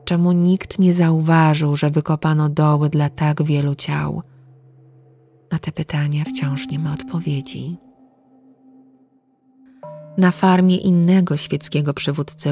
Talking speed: 110 wpm